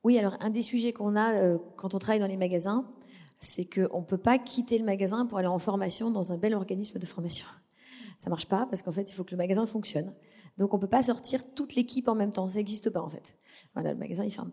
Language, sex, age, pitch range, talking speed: French, female, 30-49, 185-235 Hz, 275 wpm